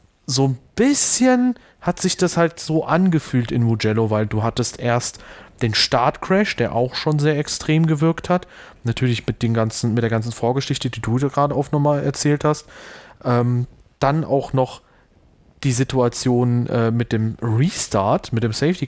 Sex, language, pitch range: male, German, 120-150 Hz